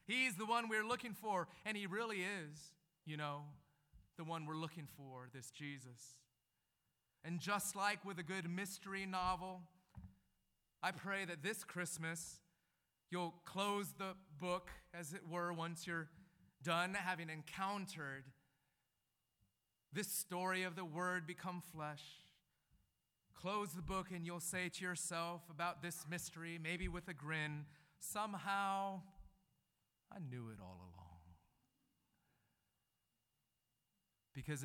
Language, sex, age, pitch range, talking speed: English, male, 30-49, 130-180 Hz, 125 wpm